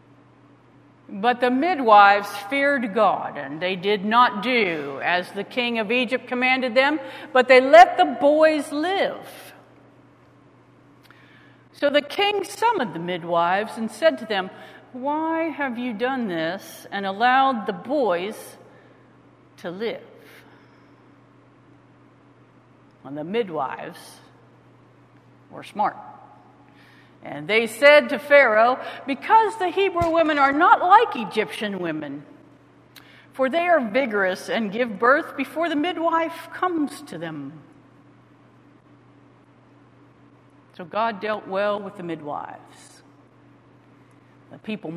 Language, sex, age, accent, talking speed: English, female, 50-69, American, 115 wpm